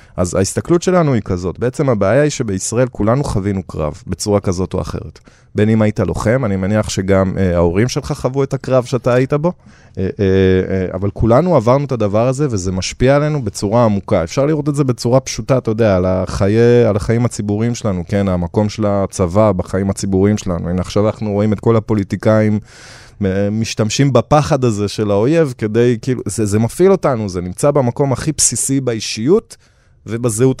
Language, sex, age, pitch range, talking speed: Hebrew, male, 20-39, 95-125 Hz, 180 wpm